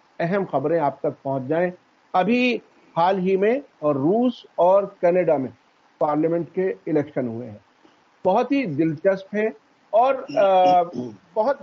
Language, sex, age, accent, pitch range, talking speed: English, male, 50-69, Indian, 160-235 Hz, 135 wpm